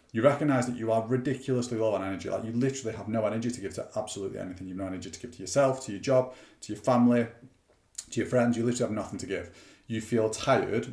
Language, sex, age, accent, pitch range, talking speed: English, male, 30-49, British, 110-130 Hz, 245 wpm